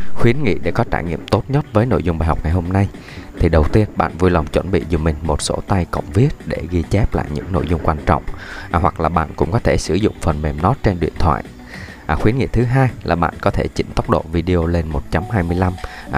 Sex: male